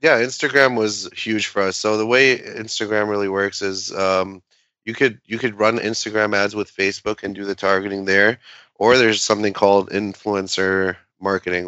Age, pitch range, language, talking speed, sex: 20-39, 95-110 Hz, English, 175 wpm, male